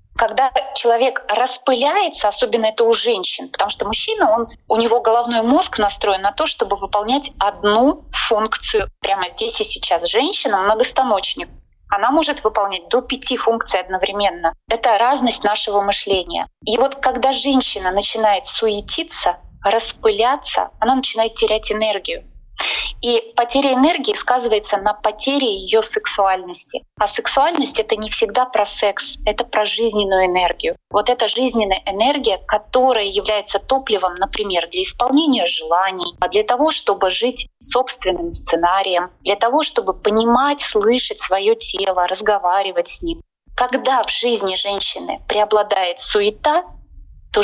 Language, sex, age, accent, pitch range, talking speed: Russian, female, 20-39, native, 200-265 Hz, 135 wpm